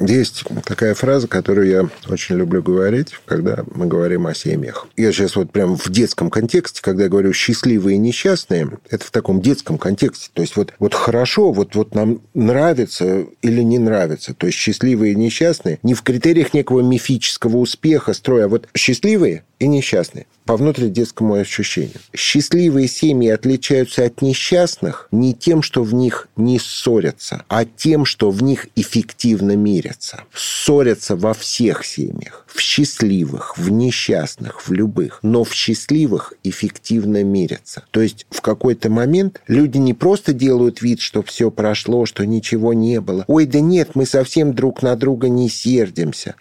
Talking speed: 160 wpm